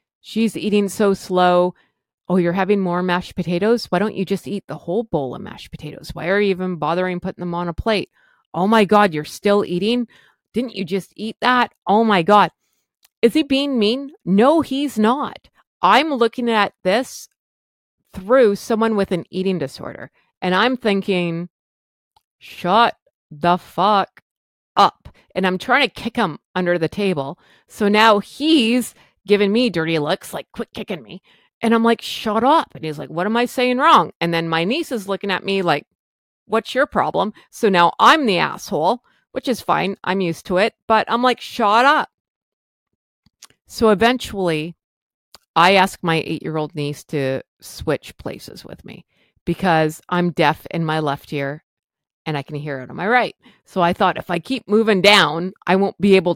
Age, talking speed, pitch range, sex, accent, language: 30-49, 180 wpm, 175-225 Hz, female, American, English